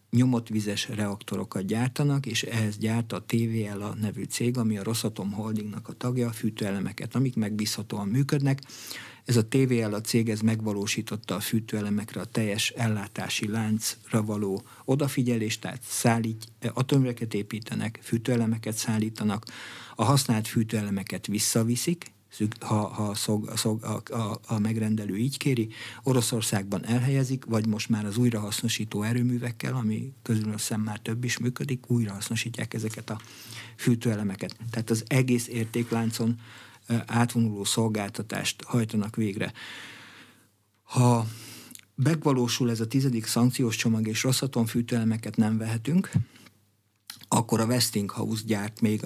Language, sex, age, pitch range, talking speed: Hungarian, male, 60-79, 110-120 Hz, 115 wpm